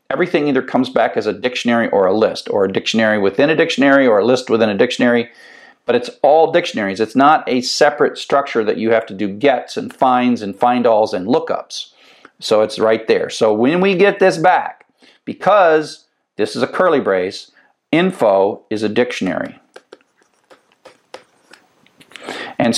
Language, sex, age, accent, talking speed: English, male, 50-69, American, 170 wpm